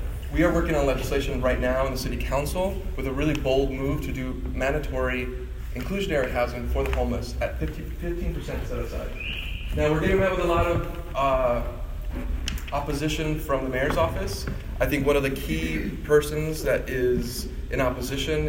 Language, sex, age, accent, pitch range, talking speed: English, male, 20-39, American, 100-145 Hz, 170 wpm